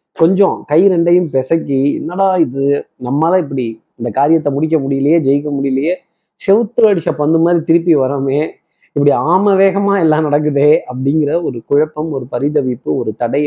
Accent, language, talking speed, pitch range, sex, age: native, Tamil, 135 wpm, 135-175 Hz, male, 30-49